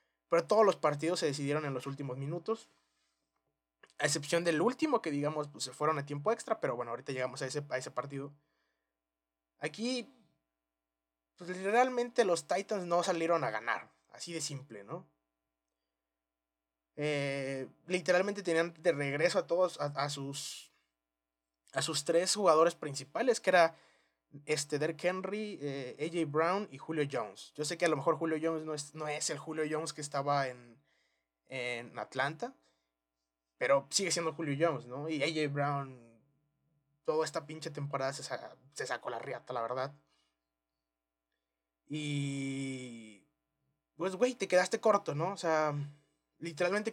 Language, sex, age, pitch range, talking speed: Spanish, male, 20-39, 105-170 Hz, 150 wpm